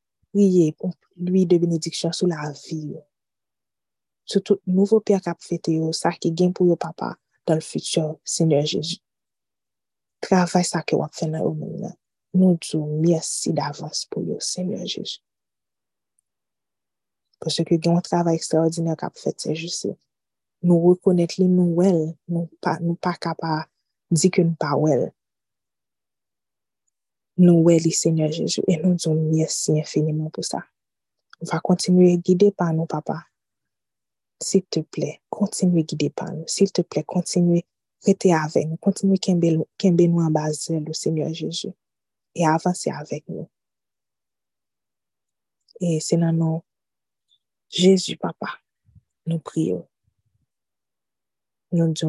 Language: French